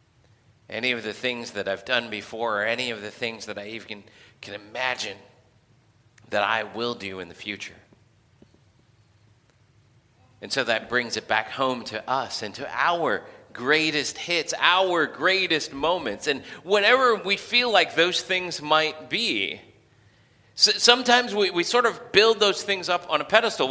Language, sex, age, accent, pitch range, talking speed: English, male, 40-59, American, 120-180 Hz, 160 wpm